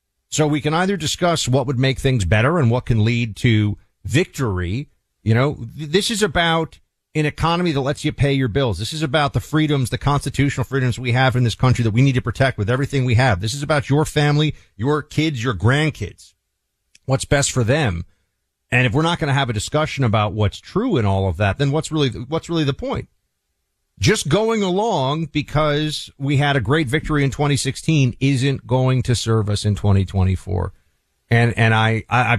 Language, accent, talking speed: English, American, 200 wpm